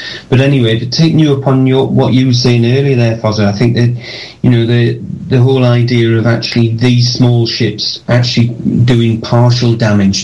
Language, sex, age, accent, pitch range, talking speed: English, male, 30-49, British, 110-120 Hz, 180 wpm